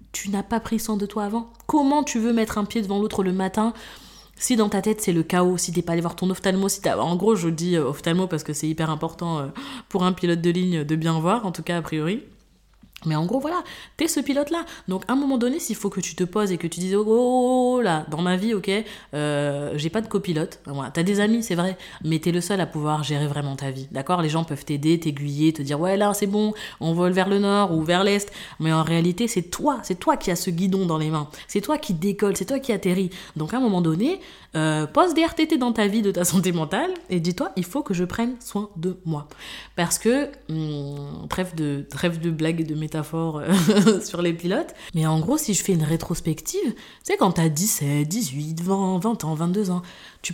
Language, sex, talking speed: French, female, 250 wpm